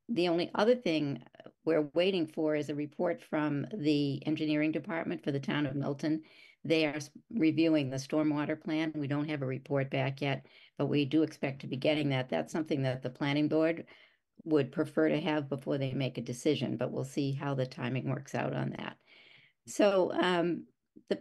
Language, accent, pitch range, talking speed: English, American, 140-165 Hz, 190 wpm